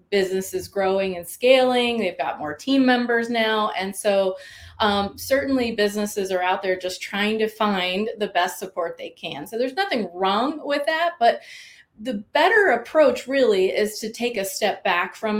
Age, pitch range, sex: 30-49, 185-225 Hz, female